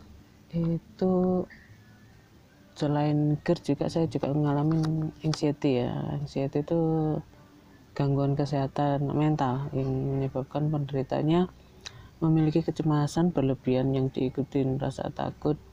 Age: 30-49